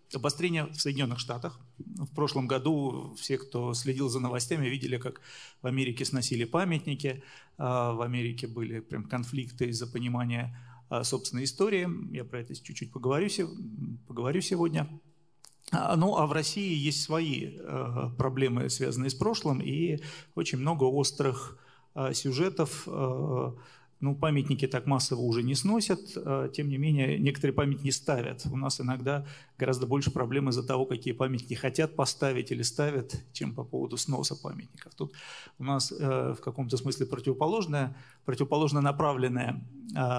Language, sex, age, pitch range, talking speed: Russian, male, 40-59, 130-155 Hz, 135 wpm